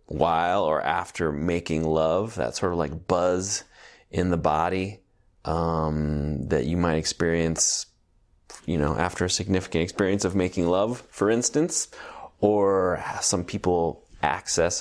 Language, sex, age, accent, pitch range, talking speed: English, male, 30-49, American, 80-95 Hz, 135 wpm